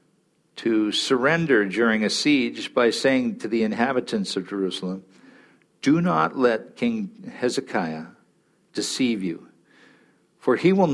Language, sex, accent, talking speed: English, male, American, 120 wpm